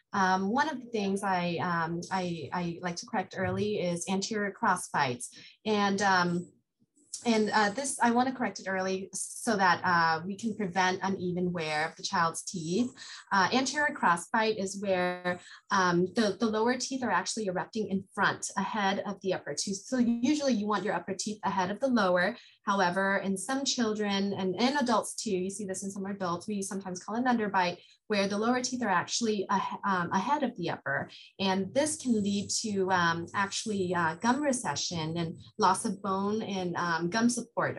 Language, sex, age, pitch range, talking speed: English, female, 20-39, 175-220 Hz, 190 wpm